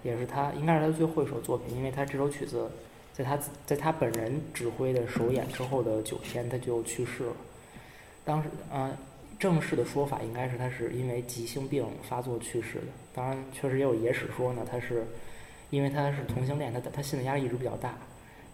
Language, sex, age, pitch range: Chinese, male, 20-39, 120-145 Hz